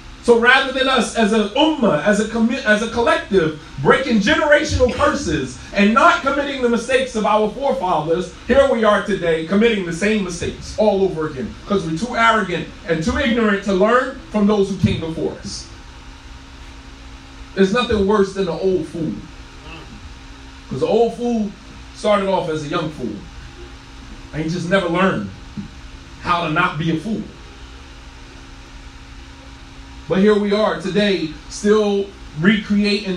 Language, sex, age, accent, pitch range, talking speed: English, male, 30-49, American, 160-215 Hz, 155 wpm